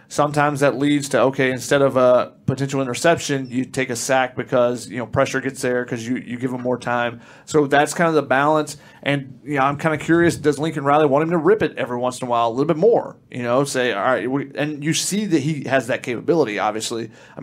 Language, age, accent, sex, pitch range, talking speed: English, 30-49, American, male, 125-145 Hz, 250 wpm